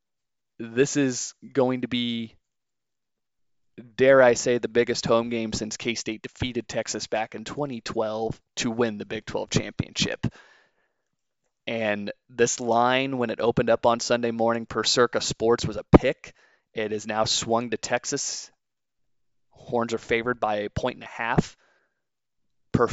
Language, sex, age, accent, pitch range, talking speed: English, male, 20-39, American, 110-125 Hz, 150 wpm